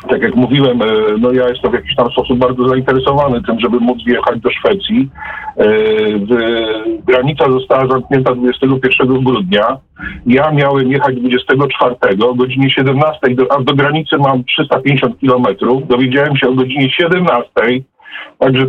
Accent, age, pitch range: native, 50-69, 130-155 Hz